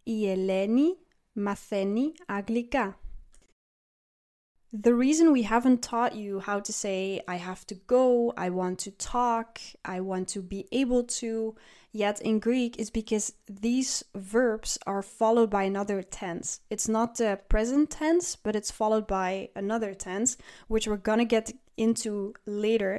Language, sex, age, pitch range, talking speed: English, female, 20-39, 200-245 Hz, 135 wpm